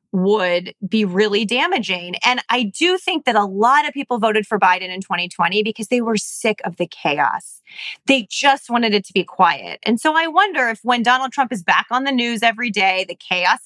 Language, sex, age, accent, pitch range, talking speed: English, female, 30-49, American, 195-255 Hz, 215 wpm